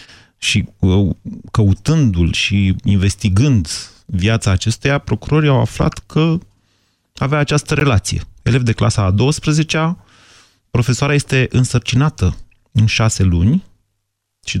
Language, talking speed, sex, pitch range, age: Romanian, 105 wpm, male, 100-130 Hz, 30-49